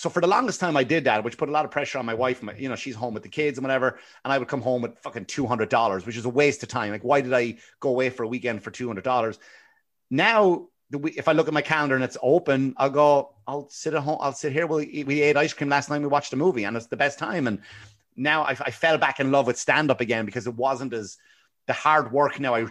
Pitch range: 105-140 Hz